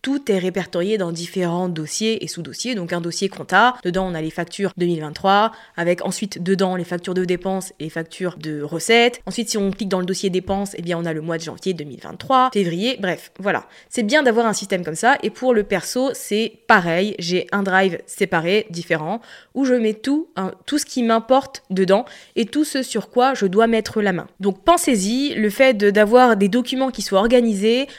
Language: French